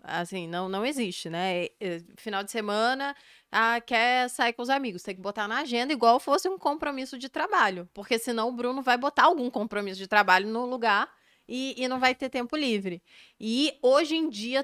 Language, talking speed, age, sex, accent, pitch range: Portuguese, 195 wpm, 20-39, female, Brazilian, 205-245 Hz